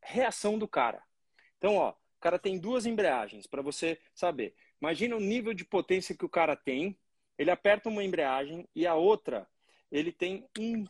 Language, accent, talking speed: Portuguese, Brazilian, 175 wpm